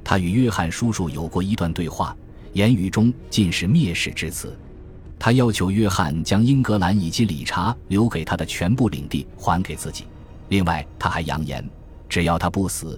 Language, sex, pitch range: Chinese, male, 80-105 Hz